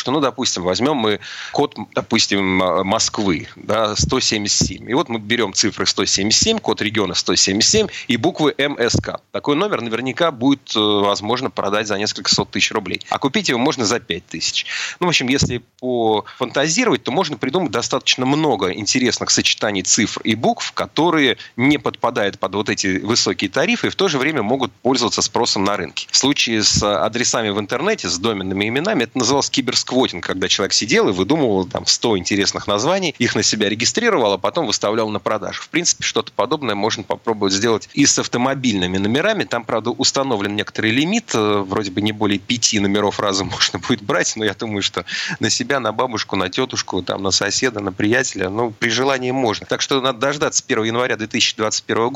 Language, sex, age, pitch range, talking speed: Russian, male, 30-49, 100-130 Hz, 175 wpm